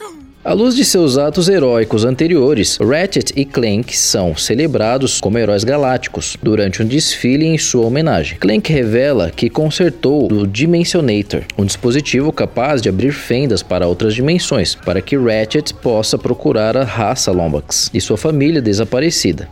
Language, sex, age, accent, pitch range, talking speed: Portuguese, male, 20-39, Brazilian, 105-150 Hz, 150 wpm